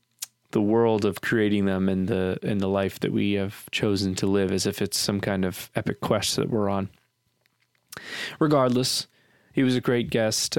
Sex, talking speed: male, 185 wpm